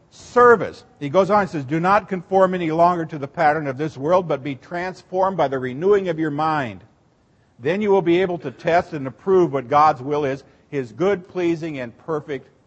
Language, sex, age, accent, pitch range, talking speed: English, male, 50-69, American, 140-190 Hz, 210 wpm